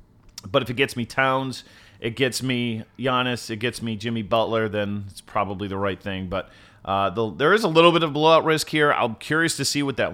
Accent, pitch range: American, 110-135 Hz